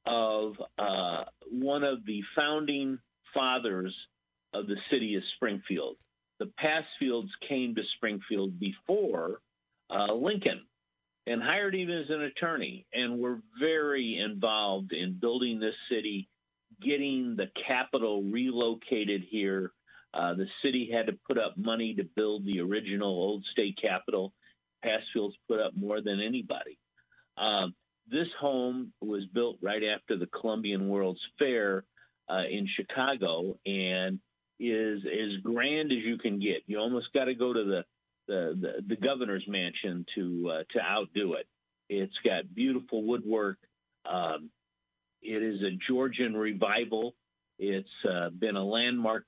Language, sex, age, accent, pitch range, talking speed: English, male, 50-69, American, 100-125 Hz, 140 wpm